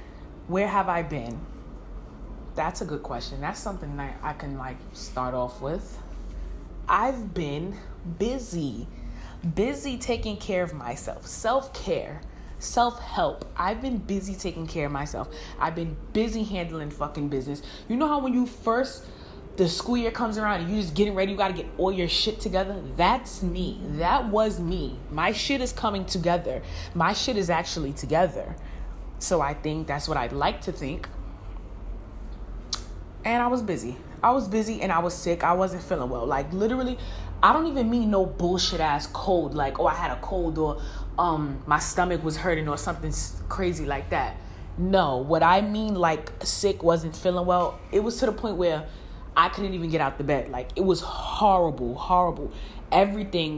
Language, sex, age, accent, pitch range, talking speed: English, female, 20-39, American, 145-200 Hz, 175 wpm